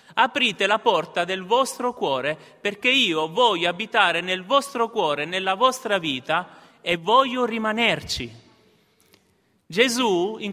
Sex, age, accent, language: male, 30-49, native, Italian